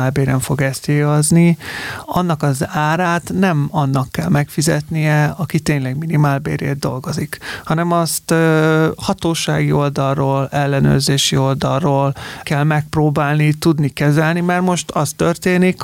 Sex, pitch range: male, 140-165 Hz